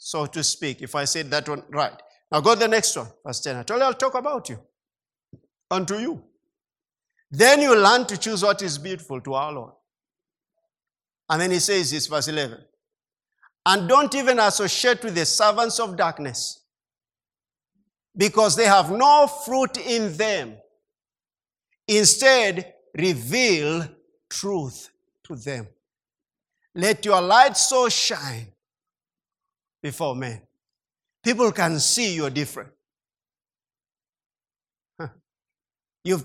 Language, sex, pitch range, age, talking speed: English, male, 155-240 Hz, 50-69, 130 wpm